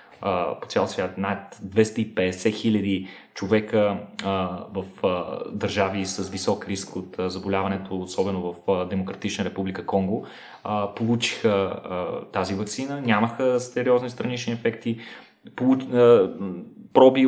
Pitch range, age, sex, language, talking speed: 100-115 Hz, 20-39, male, Bulgarian, 95 wpm